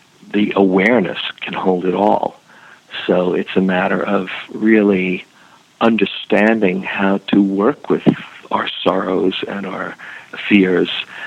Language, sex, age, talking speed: English, male, 50-69, 115 wpm